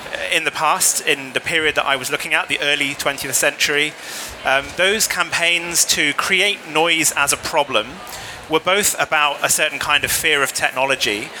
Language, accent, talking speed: Swedish, British, 180 wpm